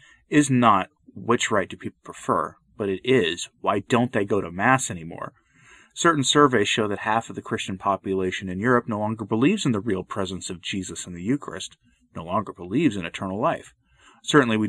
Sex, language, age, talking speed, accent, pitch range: male, English, 30-49, 195 wpm, American, 95-135 Hz